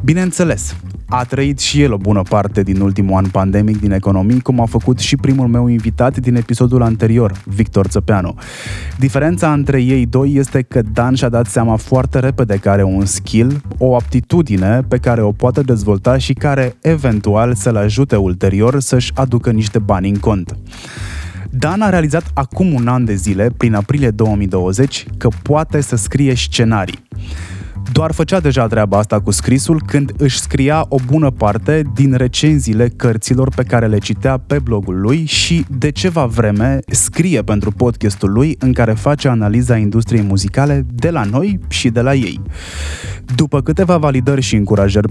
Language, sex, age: English, male, 20-39